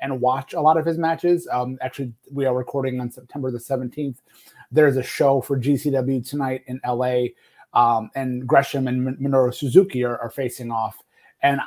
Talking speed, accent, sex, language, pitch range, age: 180 wpm, American, male, English, 125-140 Hz, 30-49